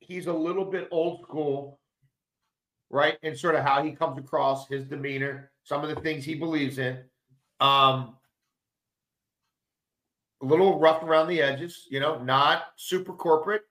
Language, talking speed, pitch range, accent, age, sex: English, 150 wpm, 145-200 Hz, American, 40-59, male